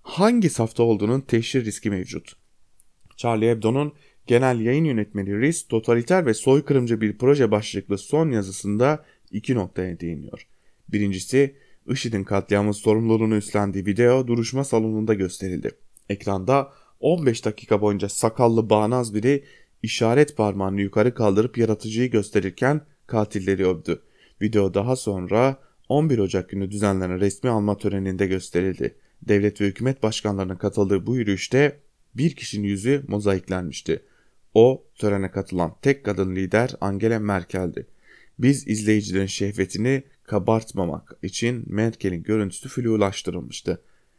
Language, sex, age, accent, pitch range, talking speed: German, male, 30-49, Turkish, 100-125 Hz, 115 wpm